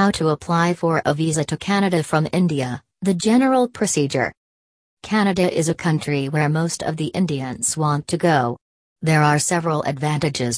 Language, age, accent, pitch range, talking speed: English, 40-59, American, 140-170 Hz, 165 wpm